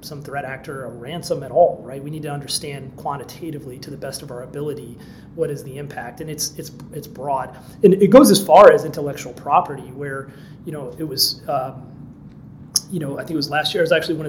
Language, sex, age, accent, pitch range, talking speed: English, male, 30-49, American, 140-160 Hz, 230 wpm